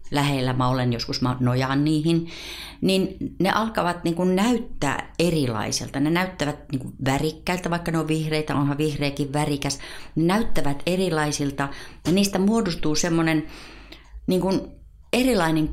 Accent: native